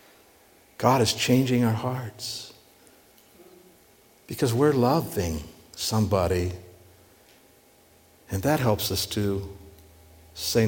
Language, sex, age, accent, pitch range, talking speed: English, male, 60-79, American, 95-130 Hz, 85 wpm